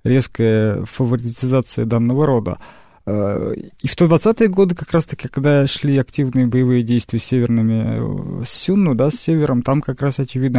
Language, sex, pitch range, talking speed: Russian, male, 115-150 Hz, 145 wpm